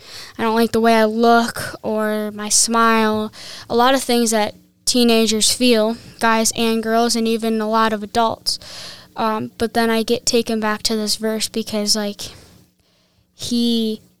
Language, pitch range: English, 215-235 Hz